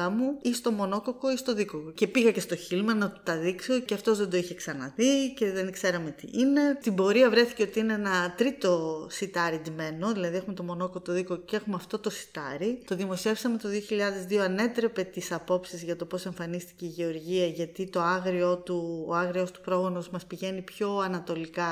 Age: 20-39